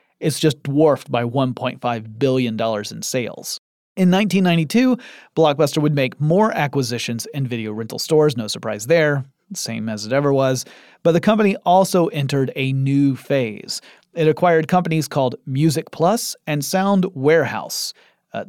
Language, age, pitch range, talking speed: English, 30-49, 125-160 Hz, 145 wpm